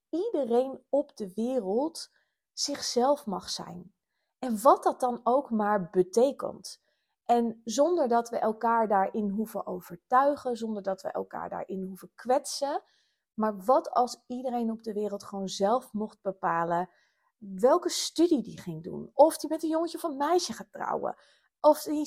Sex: female